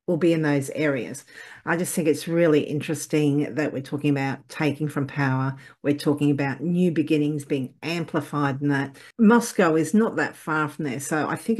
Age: 50-69